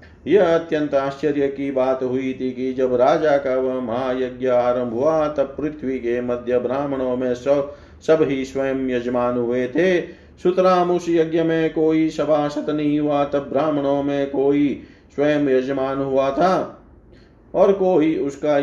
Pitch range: 125-150 Hz